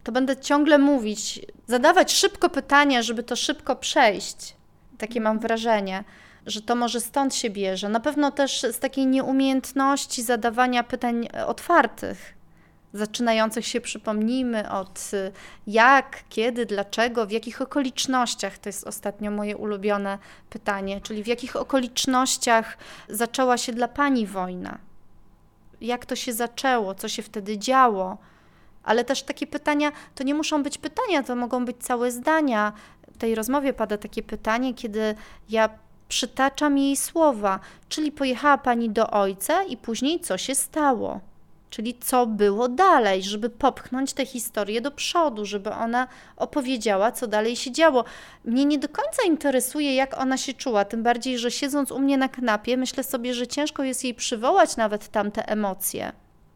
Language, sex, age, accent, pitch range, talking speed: Polish, female, 30-49, native, 220-270 Hz, 150 wpm